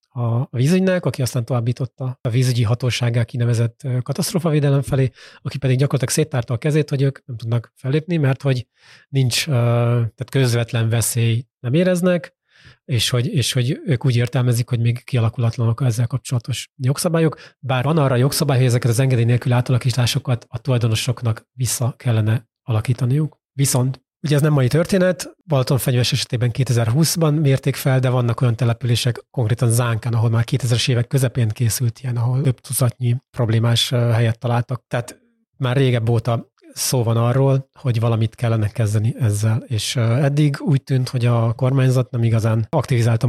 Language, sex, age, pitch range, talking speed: Hungarian, male, 30-49, 120-135 Hz, 155 wpm